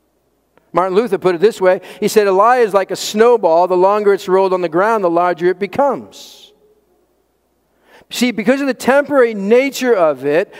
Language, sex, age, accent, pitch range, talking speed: English, male, 50-69, American, 190-255 Hz, 185 wpm